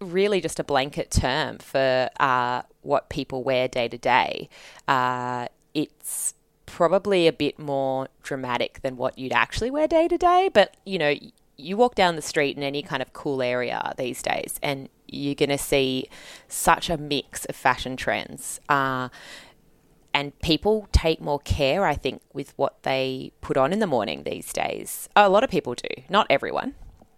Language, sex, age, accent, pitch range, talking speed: English, female, 20-39, Australian, 130-160 Hz, 175 wpm